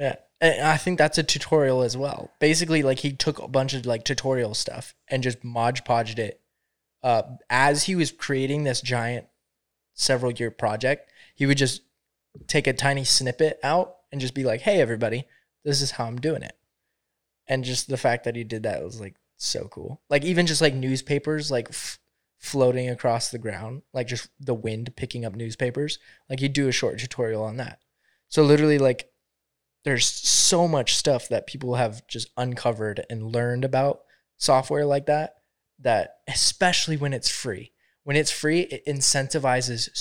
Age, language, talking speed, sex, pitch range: 20-39, English, 175 wpm, male, 120-145 Hz